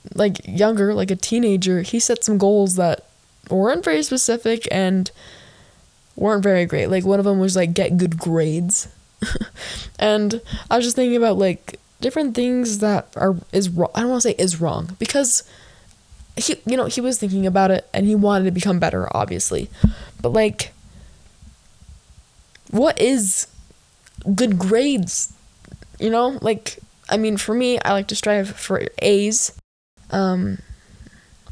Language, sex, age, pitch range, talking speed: English, female, 10-29, 195-245 Hz, 155 wpm